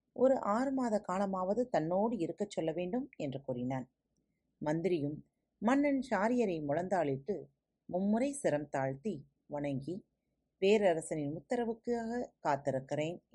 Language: Tamil